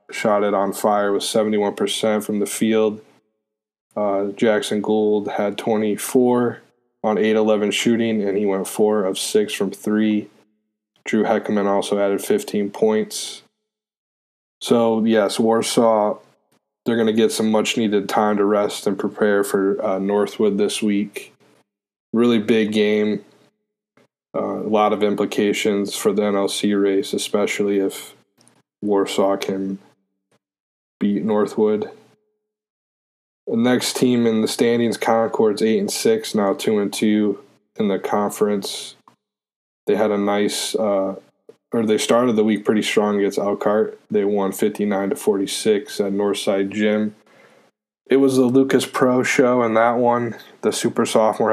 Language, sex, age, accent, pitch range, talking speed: English, male, 20-39, American, 100-115 Hz, 140 wpm